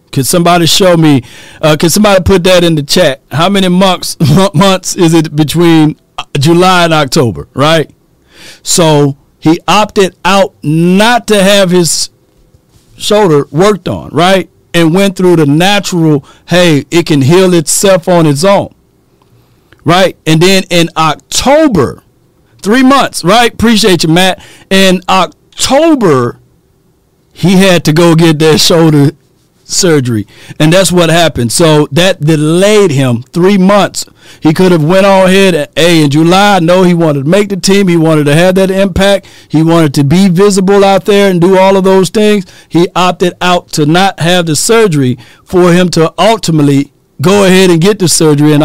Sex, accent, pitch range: male, American, 155-190 Hz